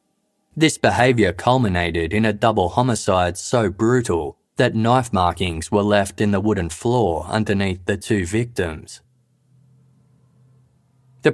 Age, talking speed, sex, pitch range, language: 20-39, 120 wpm, male, 85-125 Hz, English